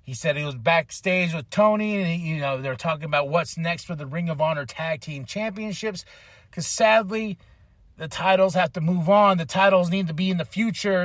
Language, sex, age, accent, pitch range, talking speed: English, male, 30-49, American, 135-200 Hz, 215 wpm